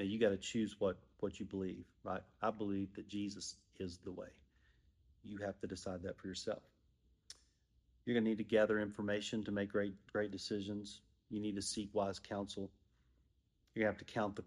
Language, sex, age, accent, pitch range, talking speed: English, male, 40-59, American, 95-110 Hz, 185 wpm